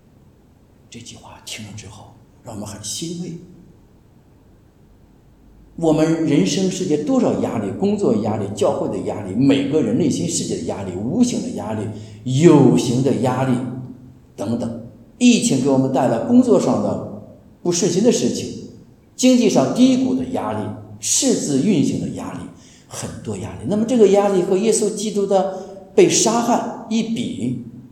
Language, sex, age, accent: English, male, 50-69, Chinese